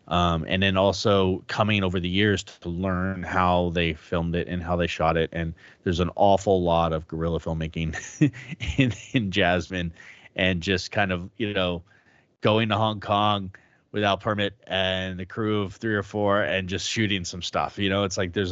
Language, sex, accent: English, male, American